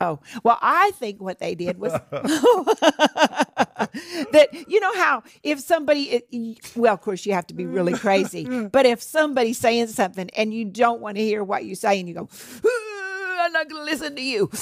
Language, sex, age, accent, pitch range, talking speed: English, female, 50-69, American, 175-235 Hz, 195 wpm